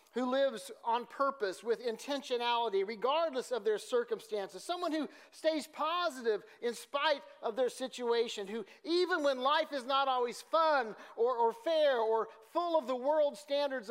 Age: 40-59